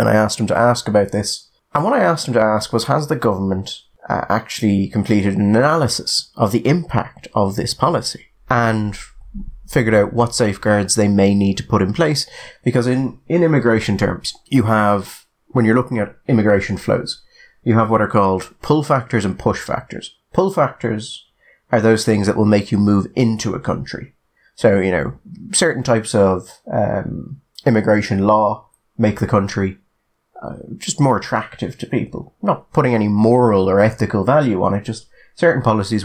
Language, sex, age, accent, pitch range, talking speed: English, male, 30-49, British, 100-120 Hz, 180 wpm